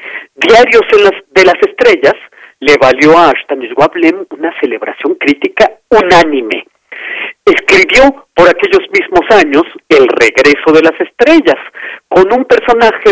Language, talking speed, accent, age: Spanish, 130 wpm, Mexican, 50-69